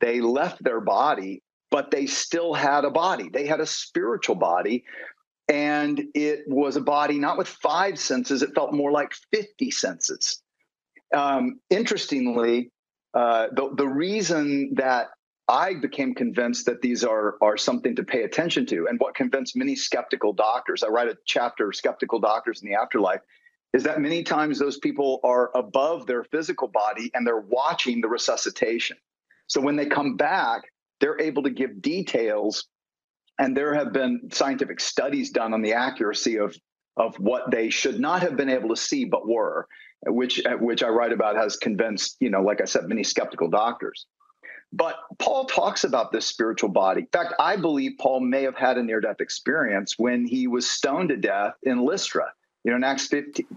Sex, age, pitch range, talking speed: male, 40-59, 125-210 Hz, 180 wpm